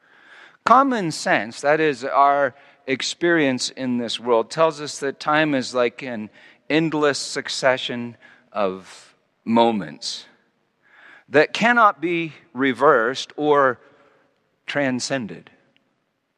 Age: 50-69